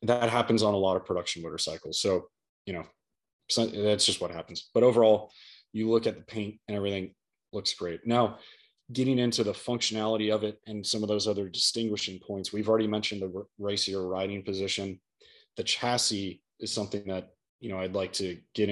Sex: male